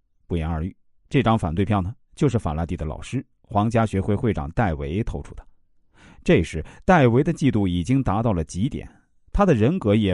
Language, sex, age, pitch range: Chinese, male, 50-69, 85-130 Hz